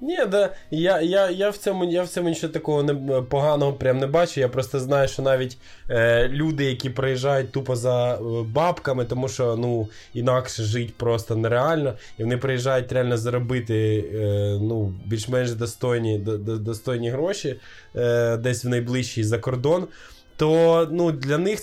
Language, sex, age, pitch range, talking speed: Ukrainian, male, 20-39, 120-160 Hz, 160 wpm